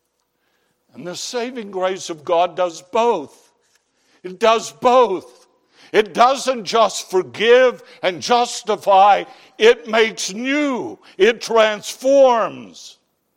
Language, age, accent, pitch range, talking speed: English, 60-79, American, 180-275 Hz, 100 wpm